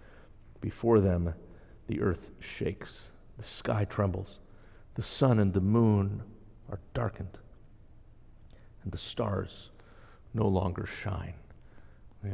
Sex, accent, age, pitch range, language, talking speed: male, American, 50-69, 95-110 Hz, English, 105 wpm